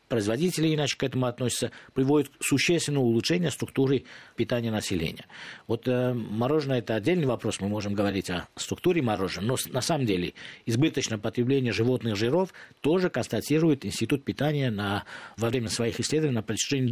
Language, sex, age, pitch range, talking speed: Russian, male, 50-69, 105-135 Hz, 150 wpm